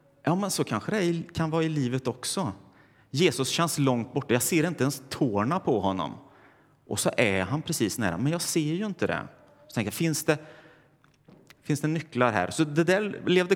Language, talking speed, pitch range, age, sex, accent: Swedish, 200 wpm, 105-150 Hz, 30-49, male, native